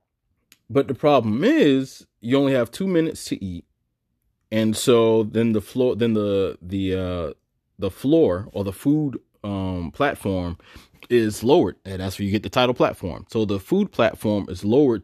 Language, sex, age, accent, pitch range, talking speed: English, male, 20-39, American, 100-125 Hz, 170 wpm